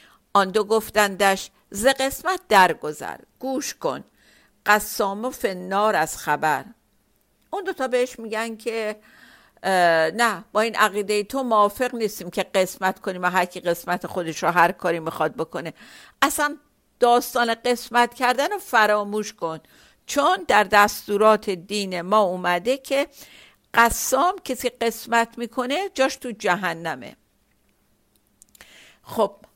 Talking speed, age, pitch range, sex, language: 125 wpm, 50-69, 185-235 Hz, female, Persian